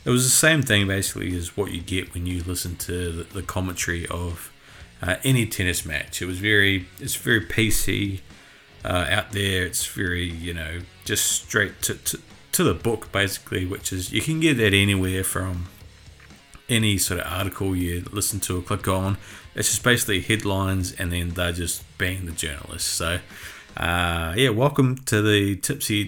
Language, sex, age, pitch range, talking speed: English, male, 30-49, 90-110 Hz, 180 wpm